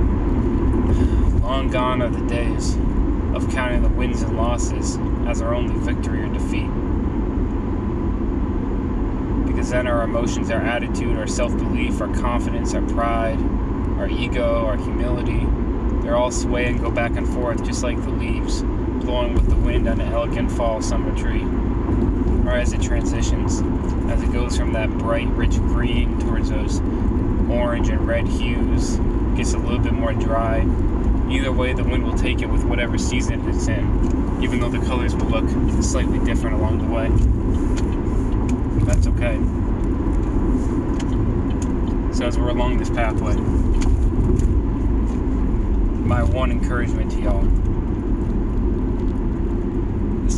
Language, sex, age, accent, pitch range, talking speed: English, male, 20-39, American, 85-115 Hz, 140 wpm